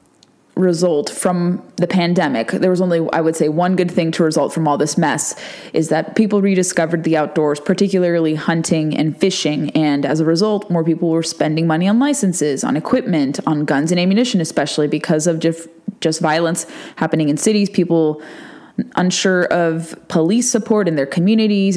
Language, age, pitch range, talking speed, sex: English, 20-39, 160-195 Hz, 170 wpm, female